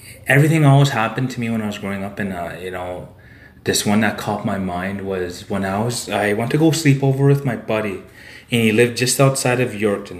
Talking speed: 235 wpm